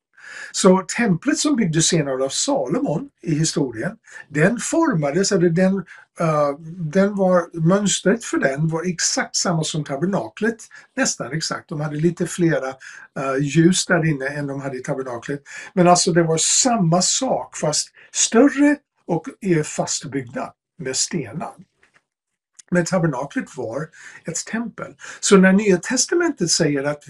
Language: English